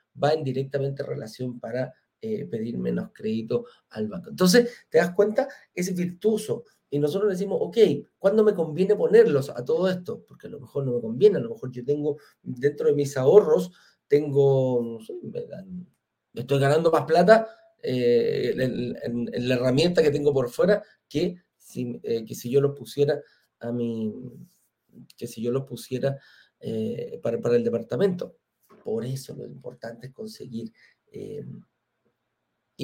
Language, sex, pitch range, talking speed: Spanish, male, 125-200 Hz, 165 wpm